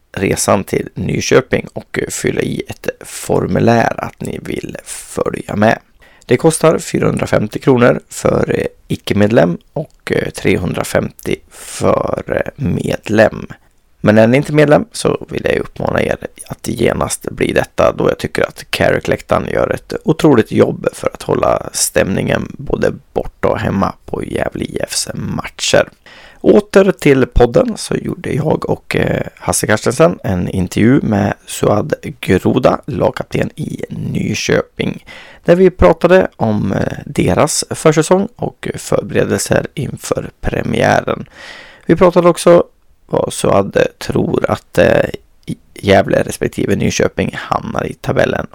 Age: 30-49